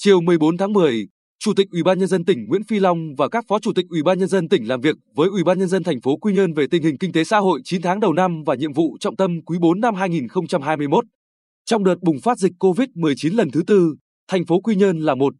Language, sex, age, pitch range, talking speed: Vietnamese, male, 20-39, 160-205 Hz, 275 wpm